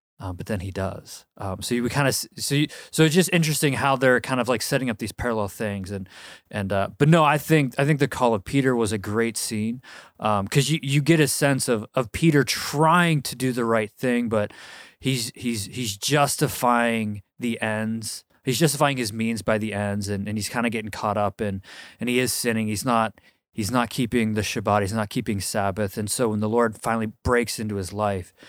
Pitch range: 105-130 Hz